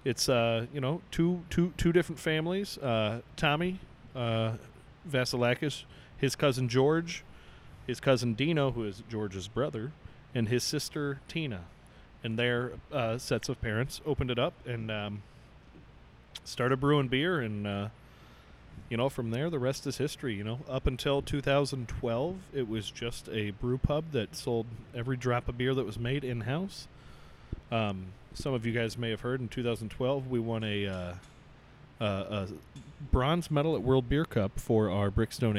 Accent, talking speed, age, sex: American, 160 wpm, 30-49, male